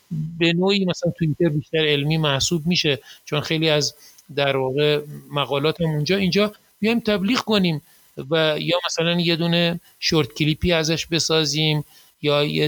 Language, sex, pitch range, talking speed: Persian, male, 150-180 Hz, 145 wpm